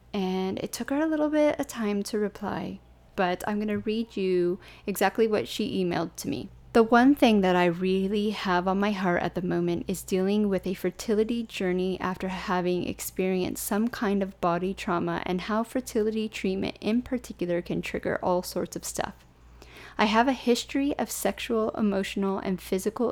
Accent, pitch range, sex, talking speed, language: American, 185-215 Hz, female, 185 wpm, English